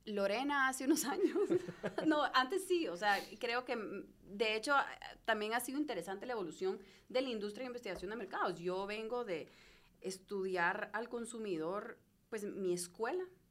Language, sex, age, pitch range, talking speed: Spanish, female, 30-49, 180-220 Hz, 155 wpm